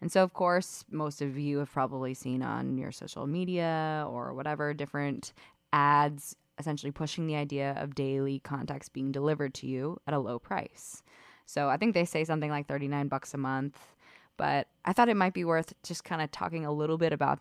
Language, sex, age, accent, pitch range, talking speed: English, female, 20-39, American, 135-165 Hz, 205 wpm